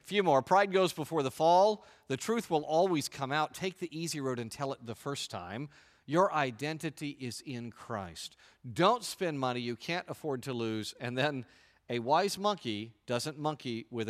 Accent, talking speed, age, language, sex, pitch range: American, 185 wpm, 40-59, English, male, 120-160 Hz